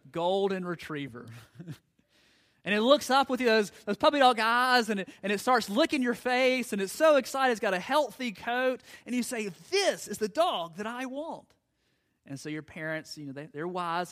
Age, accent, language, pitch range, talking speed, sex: 30-49, American, English, 135-220 Hz, 205 wpm, male